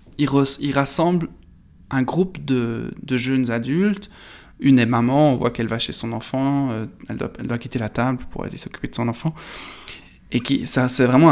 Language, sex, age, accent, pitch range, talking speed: French, male, 20-39, French, 120-135 Hz, 195 wpm